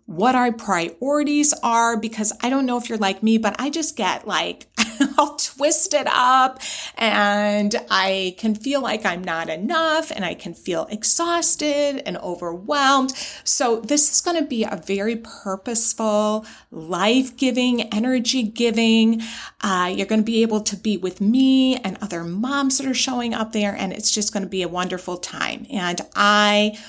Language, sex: English, female